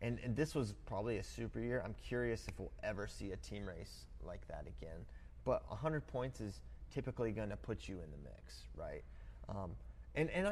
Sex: male